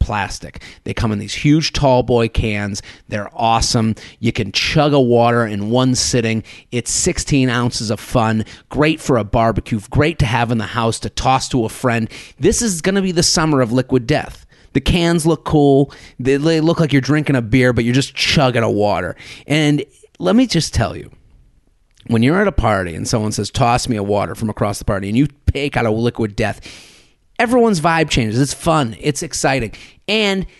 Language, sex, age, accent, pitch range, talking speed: English, male, 30-49, American, 115-170 Hz, 205 wpm